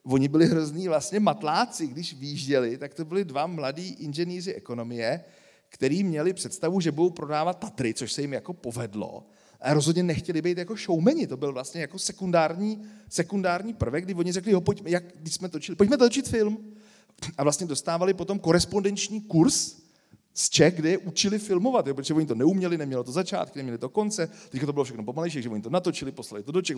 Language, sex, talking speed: Czech, male, 195 wpm